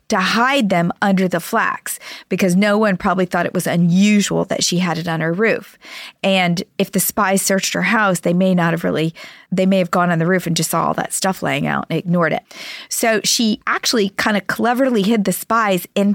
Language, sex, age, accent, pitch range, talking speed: English, female, 40-59, American, 180-245 Hz, 225 wpm